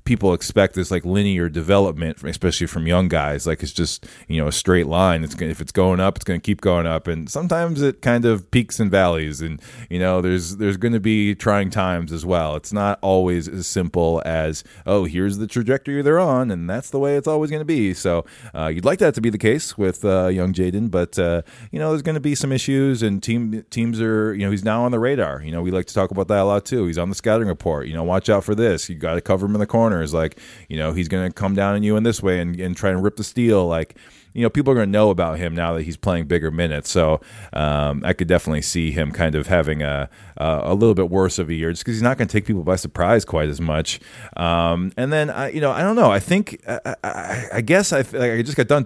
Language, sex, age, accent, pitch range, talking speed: English, male, 30-49, American, 85-110 Hz, 275 wpm